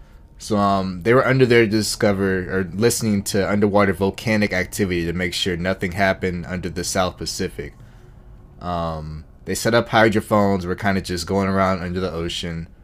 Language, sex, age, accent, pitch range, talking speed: English, male, 20-39, American, 85-105 Hz, 175 wpm